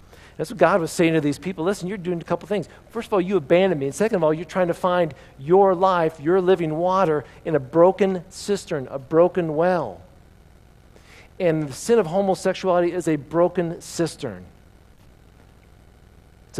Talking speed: 180 wpm